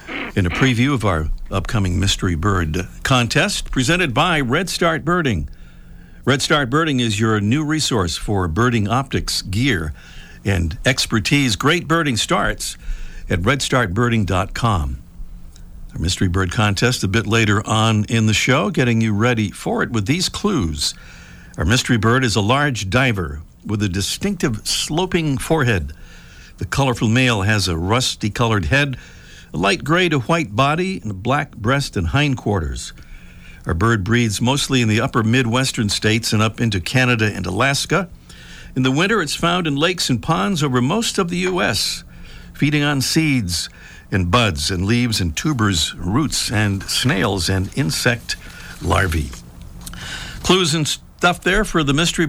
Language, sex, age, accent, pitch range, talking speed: English, male, 60-79, American, 95-140 Hz, 155 wpm